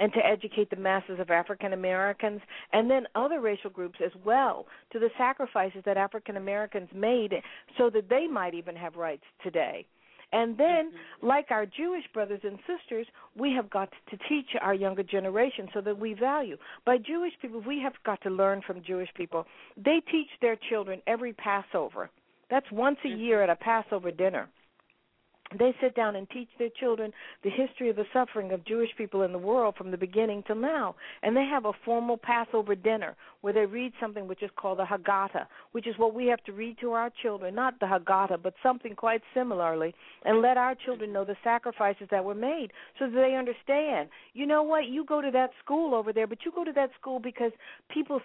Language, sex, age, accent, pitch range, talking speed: English, female, 60-79, American, 200-255 Hz, 205 wpm